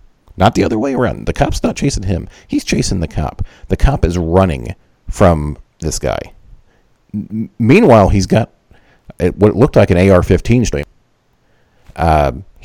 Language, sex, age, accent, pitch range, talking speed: English, male, 40-59, American, 80-105 Hz, 140 wpm